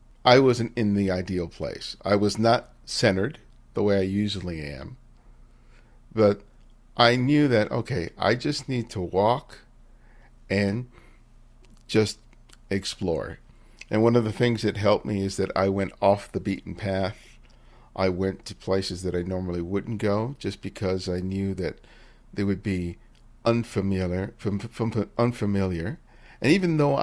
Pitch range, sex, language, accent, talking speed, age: 95-120 Hz, male, English, American, 150 wpm, 50-69